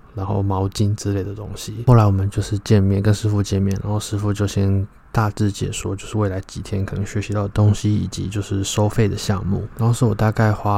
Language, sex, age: Chinese, male, 20-39